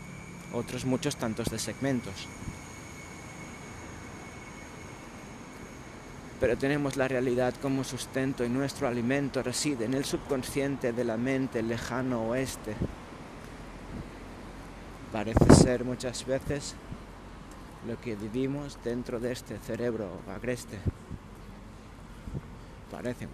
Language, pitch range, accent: Spanish, 110-130 Hz, Spanish